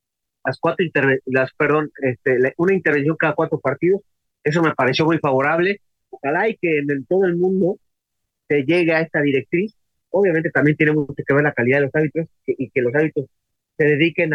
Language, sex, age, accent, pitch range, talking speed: English, male, 30-49, Mexican, 135-165 Hz, 195 wpm